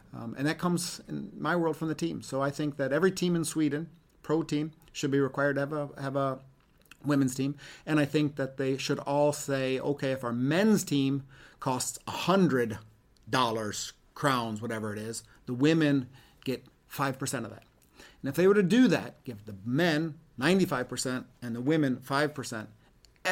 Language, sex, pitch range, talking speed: English, male, 125-155 Hz, 180 wpm